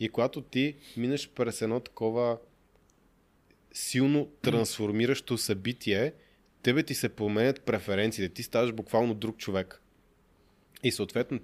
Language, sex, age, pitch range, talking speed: Bulgarian, male, 20-39, 110-135 Hz, 115 wpm